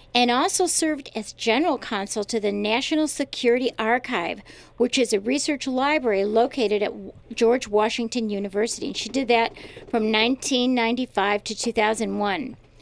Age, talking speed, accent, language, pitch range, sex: 50-69, 135 wpm, American, English, 220-285 Hz, female